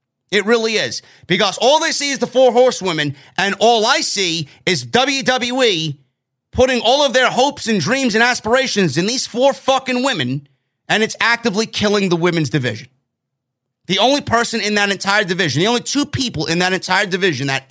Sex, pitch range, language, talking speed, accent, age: male, 130-210 Hz, English, 185 wpm, American, 30-49